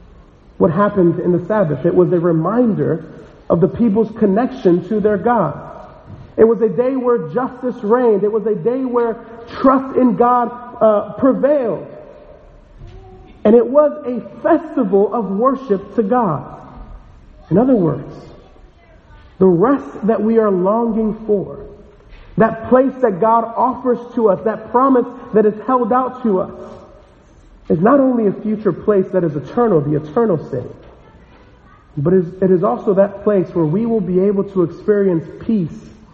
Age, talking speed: 40-59, 155 wpm